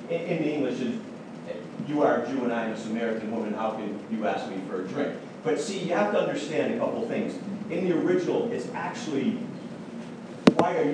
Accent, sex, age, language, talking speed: American, male, 40-59, English, 210 wpm